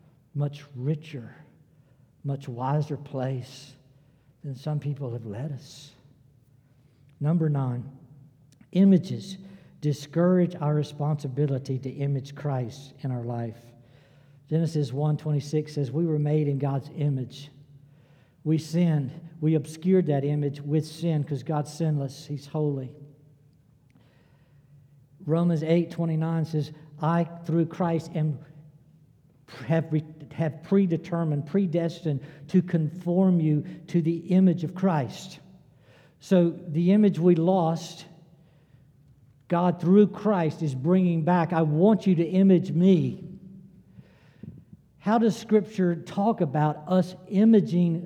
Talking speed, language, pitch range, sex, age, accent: 110 wpm, English, 140-170 Hz, male, 60-79, American